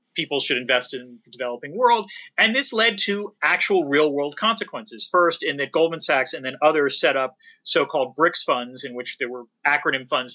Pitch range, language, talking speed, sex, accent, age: 125-200 Hz, English, 195 wpm, male, American, 30-49